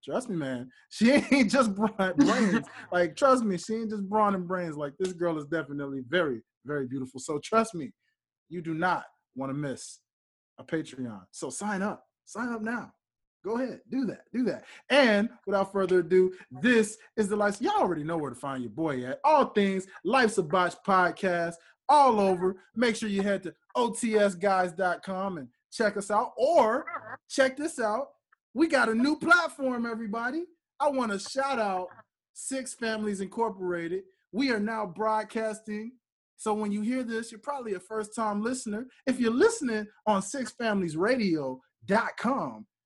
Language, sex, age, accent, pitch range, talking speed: English, male, 20-39, American, 180-240 Hz, 170 wpm